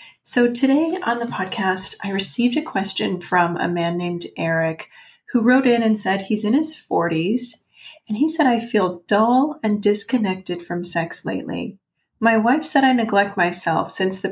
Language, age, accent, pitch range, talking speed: English, 30-49, American, 175-230 Hz, 175 wpm